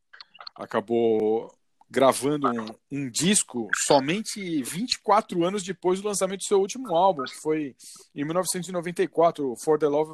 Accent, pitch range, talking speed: Brazilian, 120-185 Hz, 130 wpm